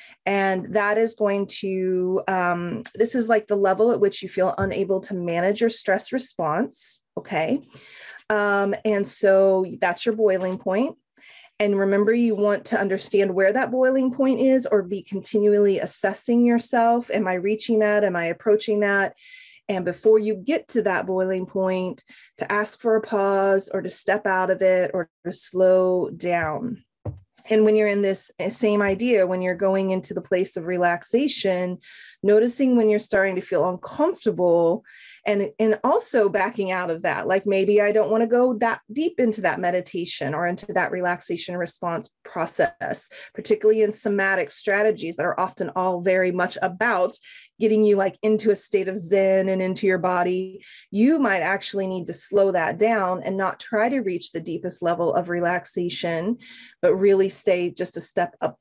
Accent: American